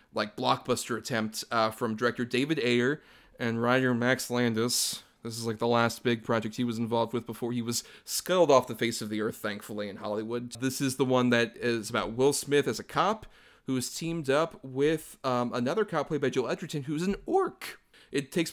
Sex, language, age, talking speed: male, English, 30-49, 210 wpm